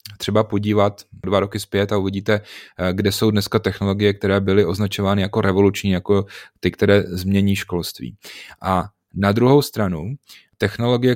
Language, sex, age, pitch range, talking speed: Czech, male, 30-49, 95-105 Hz, 140 wpm